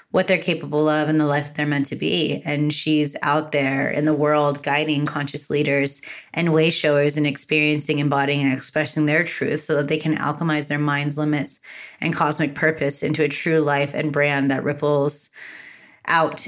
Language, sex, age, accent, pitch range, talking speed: English, female, 20-39, American, 145-160 Hz, 185 wpm